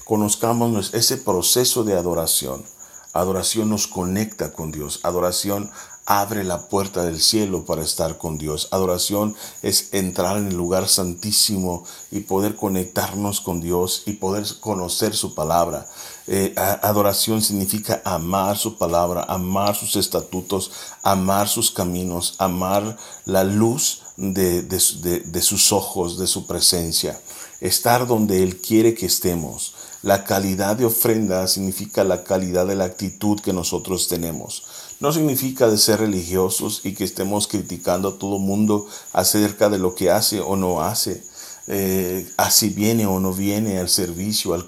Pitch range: 90-105 Hz